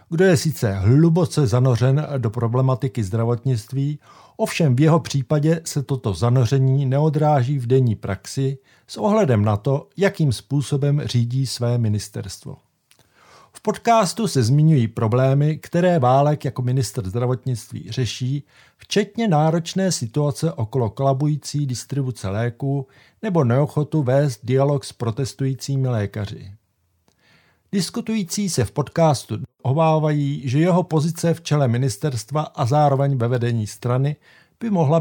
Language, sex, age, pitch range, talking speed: Czech, male, 50-69, 125-155 Hz, 120 wpm